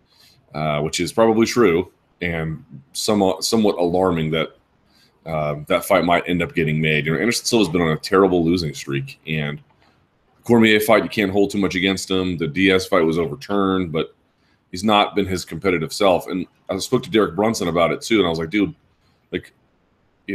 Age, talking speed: 30-49, 200 wpm